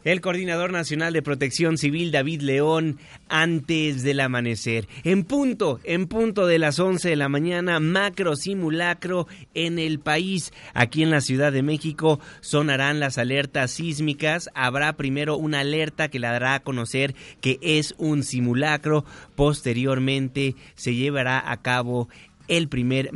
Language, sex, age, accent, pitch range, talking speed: Spanish, male, 30-49, Mexican, 130-160 Hz, 145 wpm